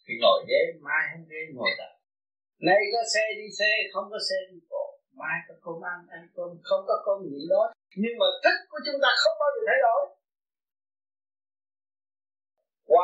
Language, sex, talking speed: Vietnamese, male, 185 wpm